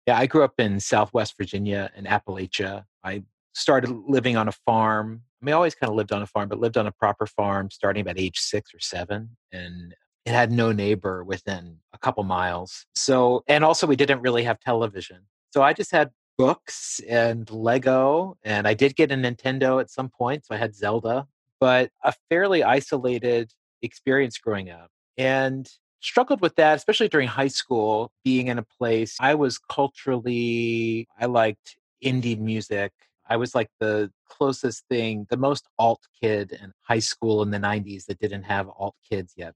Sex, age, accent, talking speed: male, 30-49, American, 185 wpm